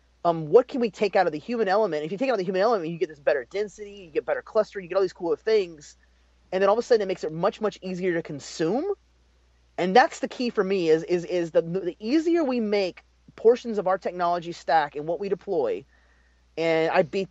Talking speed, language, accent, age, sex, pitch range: 250 wpm, English, American, 30-49, male, 165-235 Hz